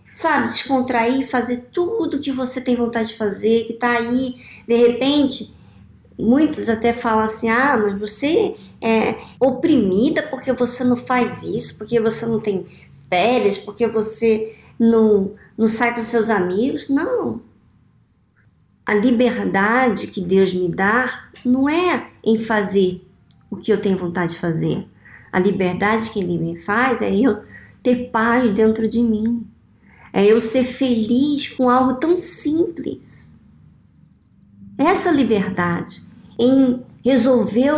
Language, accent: Portuguese, Brazilian